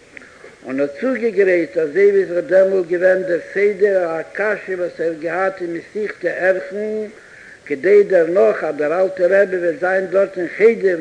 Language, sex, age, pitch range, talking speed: Hebrew, male, 60-79, 175-220 Hz, 120 wpm